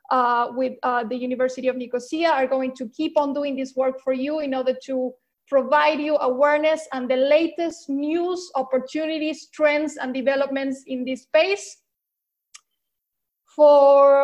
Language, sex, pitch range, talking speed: English, female, 260-330 Hz, 150 wpm